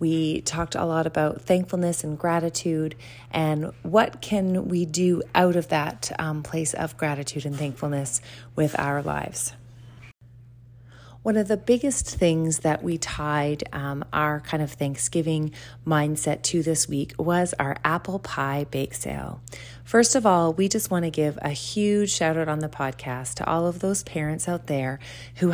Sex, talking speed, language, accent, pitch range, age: female, 165 wpm, English, American, 140-175 Hz, 30-49